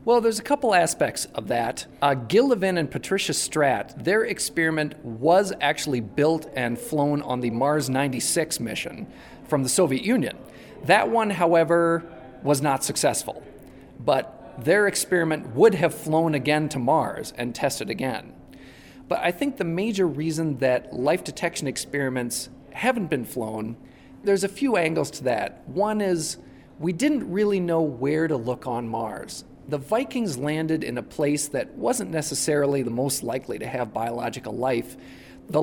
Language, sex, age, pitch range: English, male, 40-59, 135-175 Hz